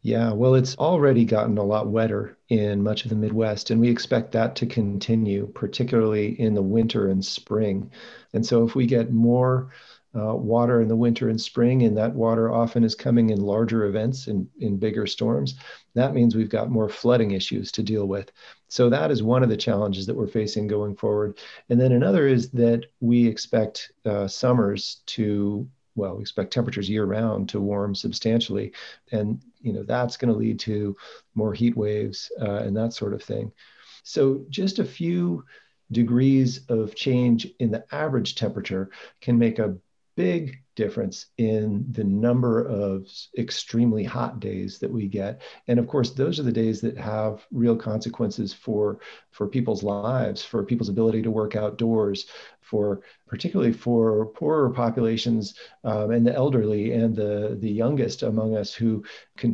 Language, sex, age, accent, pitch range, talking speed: English, male, 40-59, American, 105-120 Hz, 175 wpm